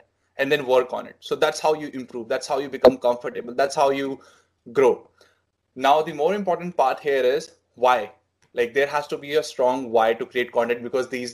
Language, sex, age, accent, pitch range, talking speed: English, male, 20-39, Indian, 125-155 Hz, 210 wpm